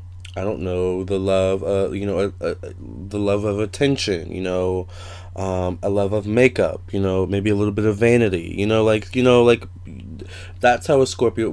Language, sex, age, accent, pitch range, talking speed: English, male, 20-39, American, 90-105 Hz, 190 wpm